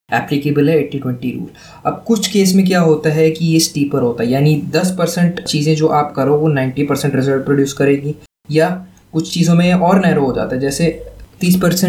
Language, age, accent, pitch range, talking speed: Hindi, 20-39, native, 150-175 Hz, 195 wpm